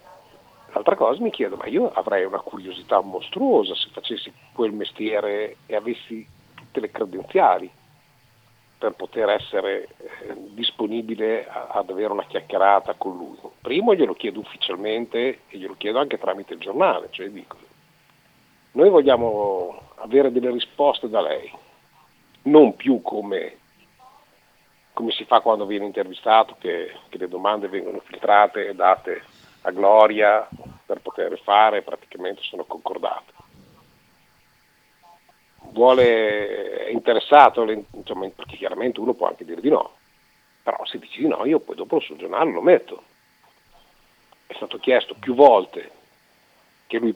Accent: native